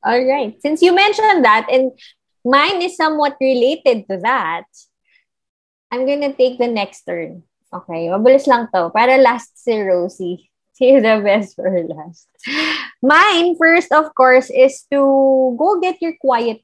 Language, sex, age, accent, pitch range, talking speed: English, female, 20-39, Filipino, 180-250 Hz, 150 wpm